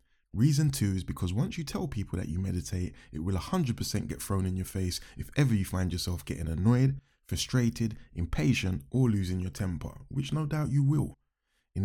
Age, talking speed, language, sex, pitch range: 20-39, 190 wpm, English, male, 95-125 Hz